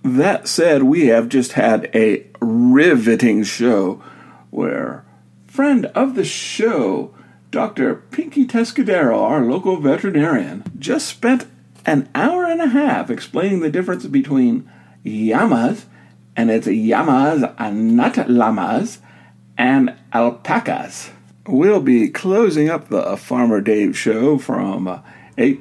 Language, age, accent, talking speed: English, 50-69, American, 115 wpm